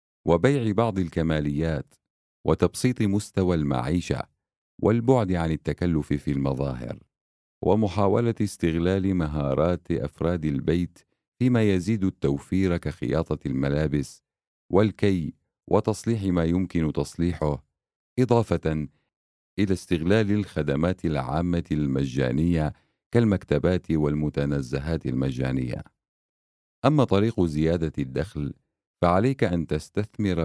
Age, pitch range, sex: 50-69, 70-95 Hz, male